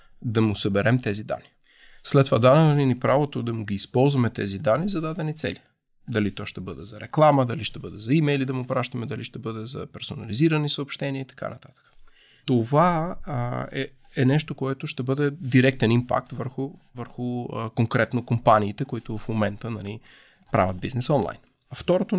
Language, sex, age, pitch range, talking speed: Bulgarian, male, 30-49, 110-140 Hz, 180 wpm